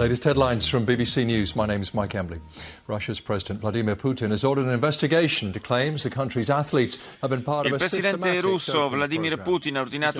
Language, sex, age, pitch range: Italian, male, 40-59, 110-145 Hz